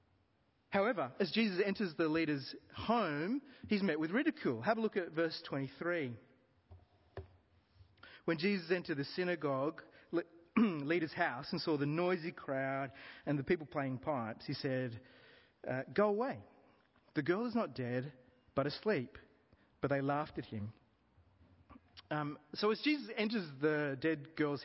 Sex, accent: male, Australian